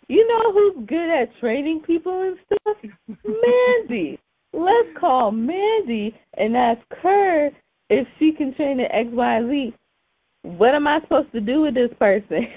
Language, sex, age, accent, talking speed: English, female, 20-39, American, 160 wpm